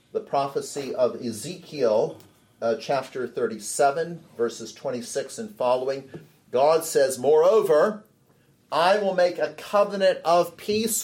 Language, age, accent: English, 50-69, American